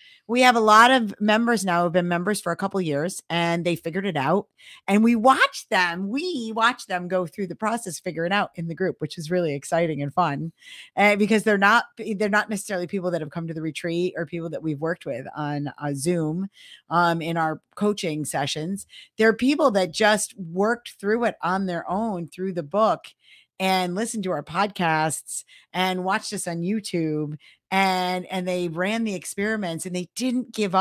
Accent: American